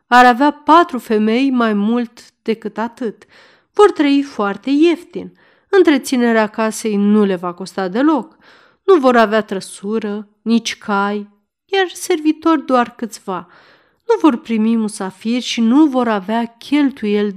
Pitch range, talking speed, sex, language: 205-270 Hz, 130 wpm, female, Romanian